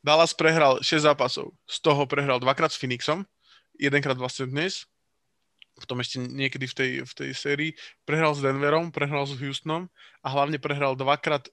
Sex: male